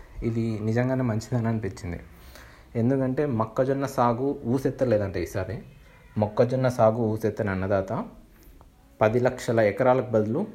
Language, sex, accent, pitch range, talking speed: Telugu, male, native, 100-120 Hz, 95 wpm